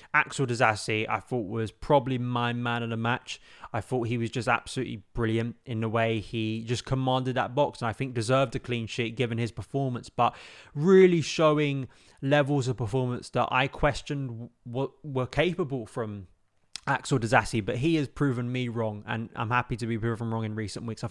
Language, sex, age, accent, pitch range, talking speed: English, male, 20-39, British, 115-135 Hz, 195 wpm